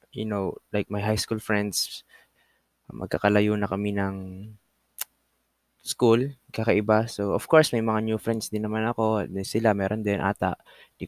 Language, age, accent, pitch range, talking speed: Filipino, 20-39, native, 105-120 Hz, 155 wpm